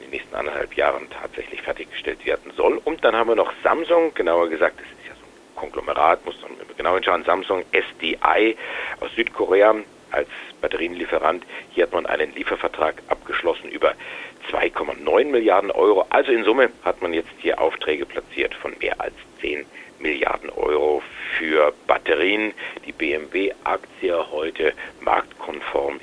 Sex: male